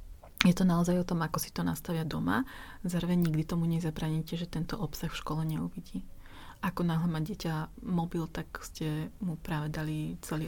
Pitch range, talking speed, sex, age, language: 150-170 Hz, 180 wpm, female, 30-49, Slovak